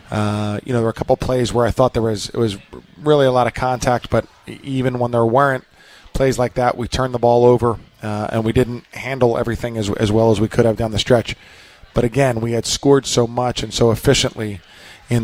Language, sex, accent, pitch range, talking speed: English, male, American, 110-125 Hz, 240 wpm